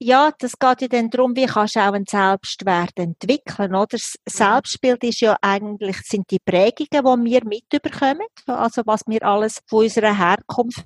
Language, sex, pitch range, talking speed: German, female, 210-250 Hz, 175 wpm